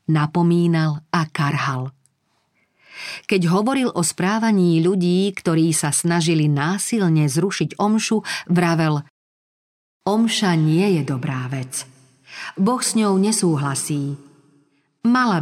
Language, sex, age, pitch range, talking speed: Slovak, female, 40-59, 150-185 Hz, 95 wpm